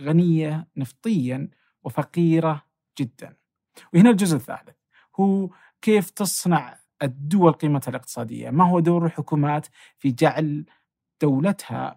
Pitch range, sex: 130-155 Hz, male